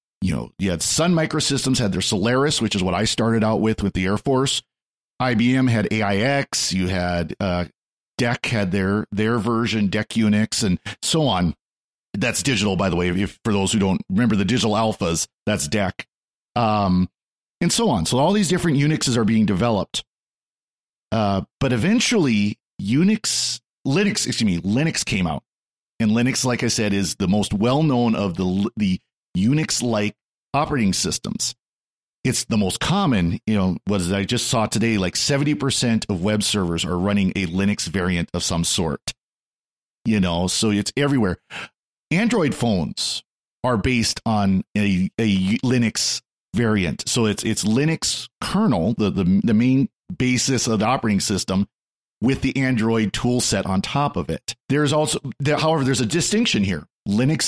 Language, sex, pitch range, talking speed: English, male, 100-130 Hz, 165 wpm